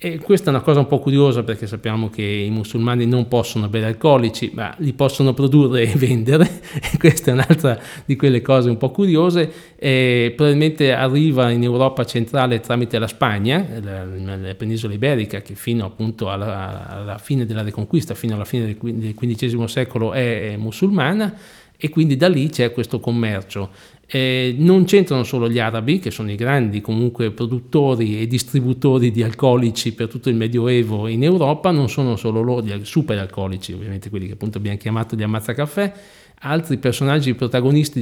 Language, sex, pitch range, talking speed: Italian, male, 115-140 Hz, 170 wpm